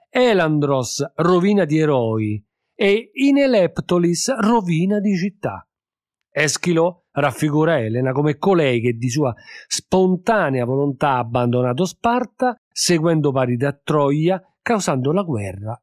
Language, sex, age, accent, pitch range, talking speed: Italian, male, 40-59, native, 125-200 Hz, 110 wpm